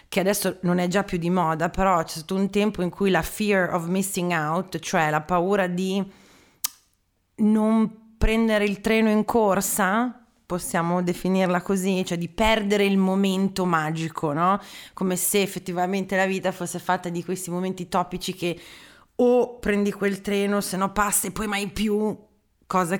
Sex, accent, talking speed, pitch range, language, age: female, native, 165 wpm, 175-205 Hz, Italian, 30-49